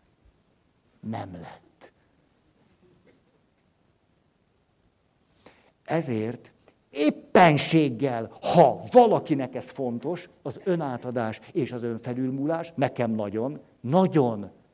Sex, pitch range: male, 115-165 Hz